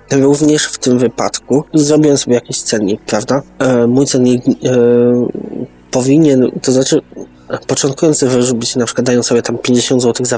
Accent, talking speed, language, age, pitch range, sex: native, 140 wpm, Polish, 20-39, 120-130 Hz, male